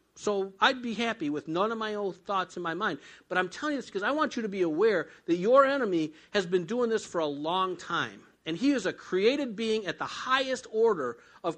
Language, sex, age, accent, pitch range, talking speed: English, male, 50-69, American, 150-225 Hz, 245 wpm